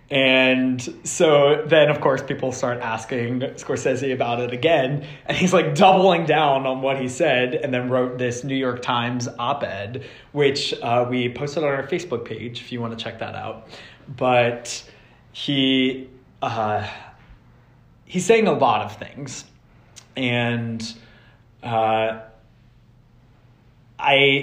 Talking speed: 140 wpm